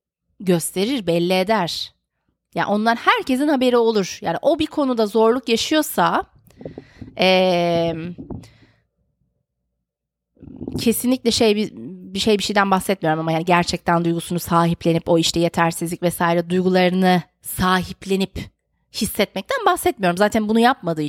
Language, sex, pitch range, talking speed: Turkish, female, 180-265 Hz, 110 wpm